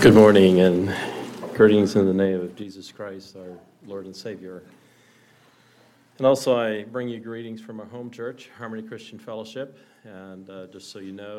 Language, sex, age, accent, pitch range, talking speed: English, male, 40-59, American, 95-115 Hz, 175 wpm